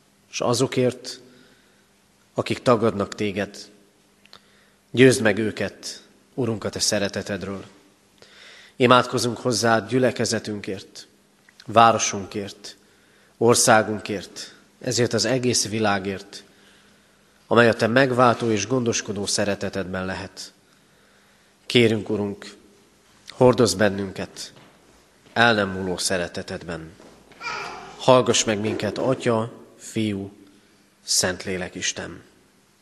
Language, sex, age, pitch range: Hungarian, male, 30-49, 100-125 Hz